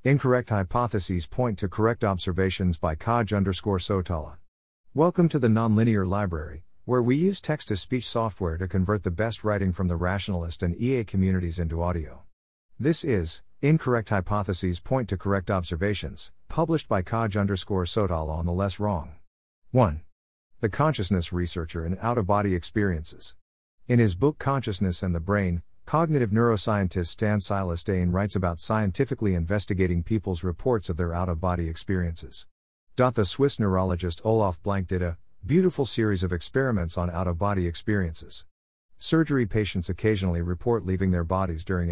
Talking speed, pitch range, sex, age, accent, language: 150 wpm, 90-115 Hz, male, 50-69, American, English